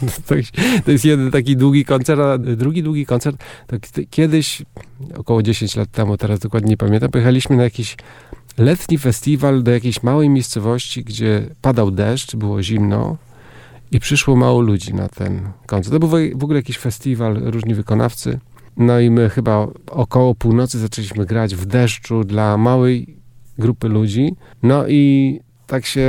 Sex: male